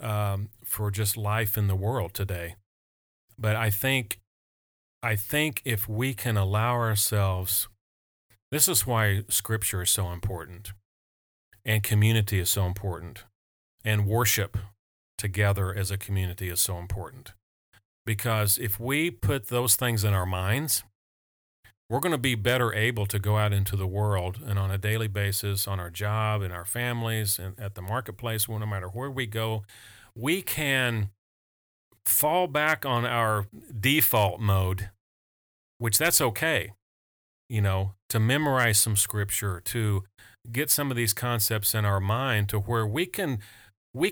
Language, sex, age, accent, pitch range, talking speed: English, male, 40-59, American, 100-120 Hz, 150 wpm